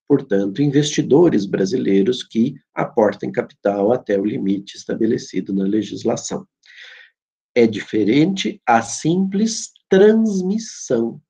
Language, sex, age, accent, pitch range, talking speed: Portuguese, male, 50-69, Brazilian, 100-150 Hz, 90 wpm